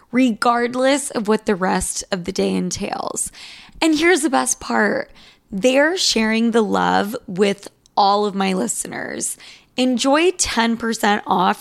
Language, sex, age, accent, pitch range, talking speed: English, female, 20-39, American, 195-235 Hz, 135 wpm